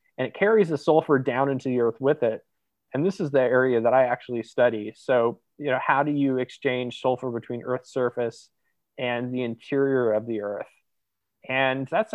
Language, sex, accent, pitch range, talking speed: English, male, American, 120-140 Hz, 195 wpm